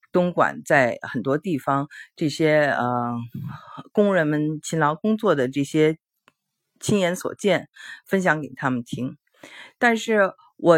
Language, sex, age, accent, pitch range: Chinese, female, 50-69, native, 145-215 Hz